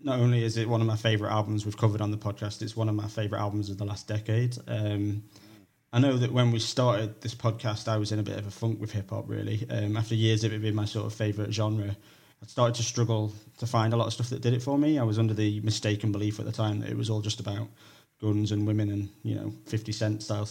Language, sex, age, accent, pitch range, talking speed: English, male, 20-39, British, 105-115 Hz, 280 wpm